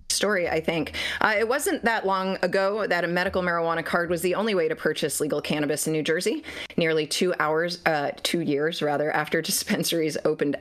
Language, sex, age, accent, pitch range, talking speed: English, female, 30-49, American, 145-185 Hz, 200 wpm